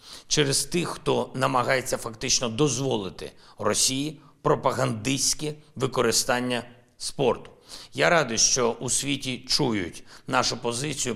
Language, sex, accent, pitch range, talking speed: Ukrainian, male, native, 110-140 Hz, 95 wpm